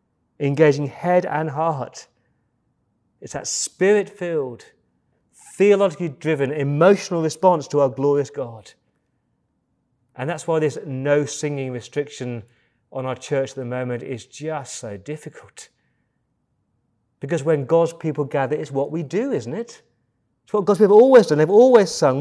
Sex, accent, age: male, British, 30-49